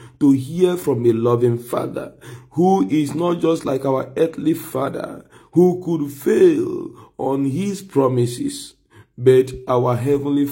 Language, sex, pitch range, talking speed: English, male, 125-150 Hz, 130 wpm